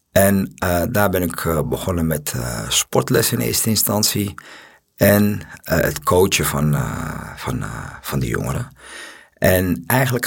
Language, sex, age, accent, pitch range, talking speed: Dutch, male, 50-69, Dutch, 80-115 Hz, 150 wpm